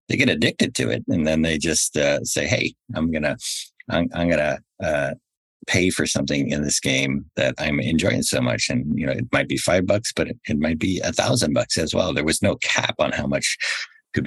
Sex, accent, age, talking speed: male, American, 50-69, 230 wpm